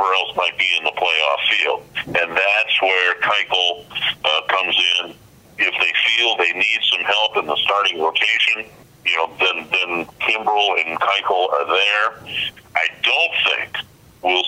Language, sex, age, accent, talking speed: English, male, 50-69, American, 160 wpm